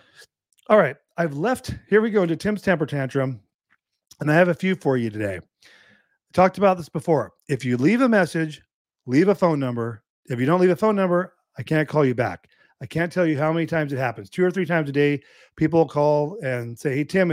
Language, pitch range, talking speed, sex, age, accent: English, 135-175 Hz, 230 wpm, male, 40-59, American